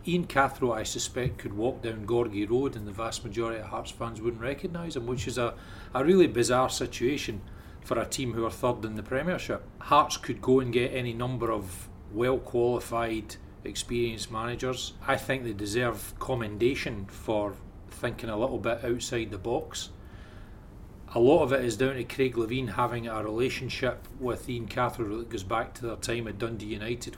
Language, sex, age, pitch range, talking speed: English, male, 40-59, 105-125 Hz, 185 wpm